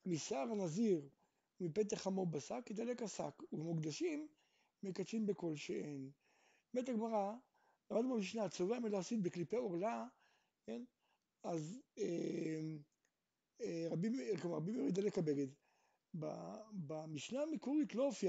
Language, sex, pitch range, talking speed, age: Hebrew, male, 175-255 Hz, 110 wpm, 60-79